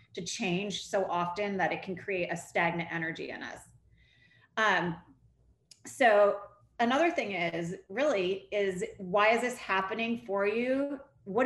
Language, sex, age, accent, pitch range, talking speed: English, female, 30-49, American, 175-215 Hz, 140 wpm